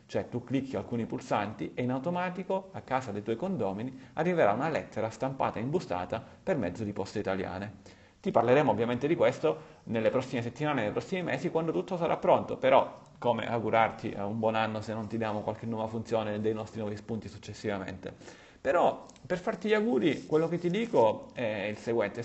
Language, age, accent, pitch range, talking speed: Italian, 30-49, native, 110-135 Hz, 185 wpm